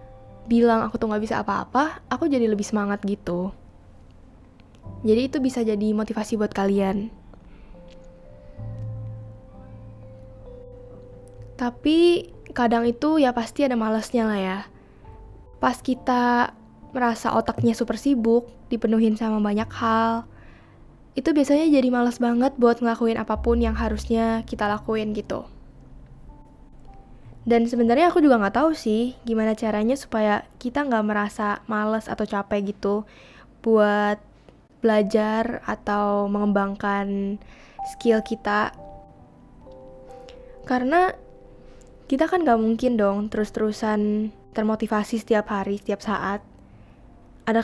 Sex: female